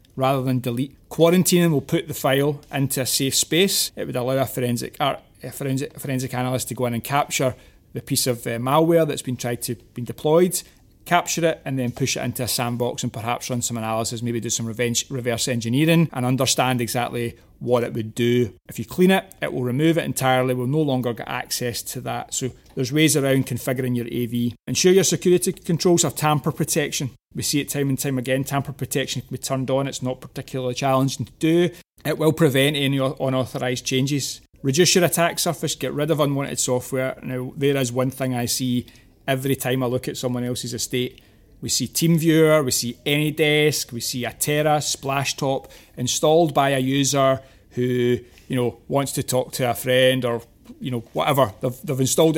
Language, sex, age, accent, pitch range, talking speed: English, male, 30-49, British, 125-145 Hz, 200 wpm